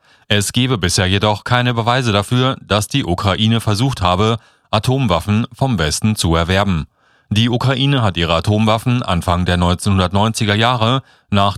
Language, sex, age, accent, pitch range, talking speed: German, male, 40-59, German, 95-125 Hz, 140 wpm